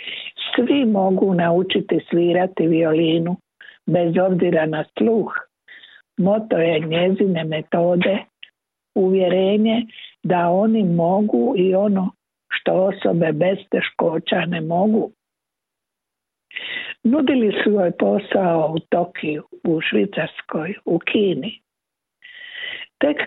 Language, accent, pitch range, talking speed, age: Croatian, native, 165-220 Hz, 95 wpm, 60-79